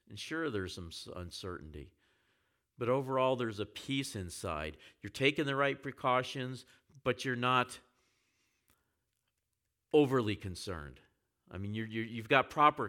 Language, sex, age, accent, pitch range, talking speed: English, male, 50-69, American, 100-125 Hz, 130 wpm